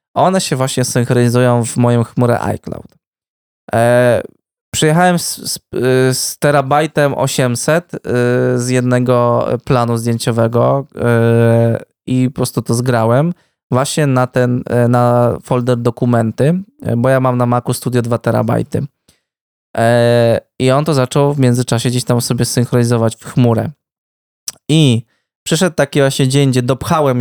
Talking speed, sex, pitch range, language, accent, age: 130 wpm, male, 120-145 Hz, Polish, native, 20-39